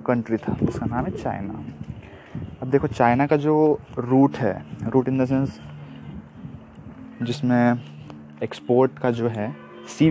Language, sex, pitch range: Hindi, male, 110-135 Hz